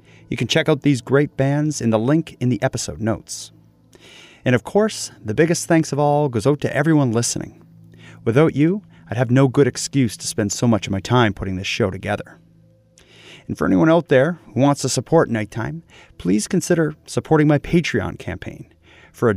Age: 30-49